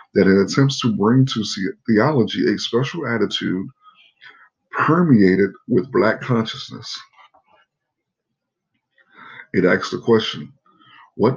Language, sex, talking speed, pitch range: English, male, 100 wpm, 110-145 Hz